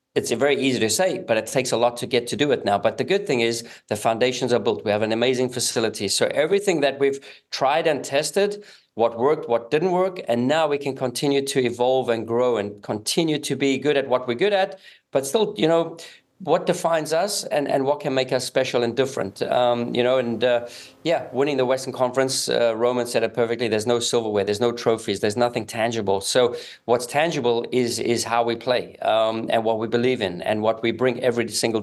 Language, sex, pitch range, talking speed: English, male, 115-135 Hz, 230 wpm